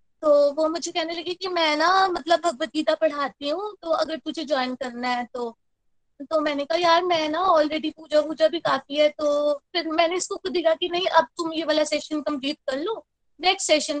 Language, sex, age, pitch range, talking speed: Hindi, female, 20-39, 290-345 Hz, 215 wpm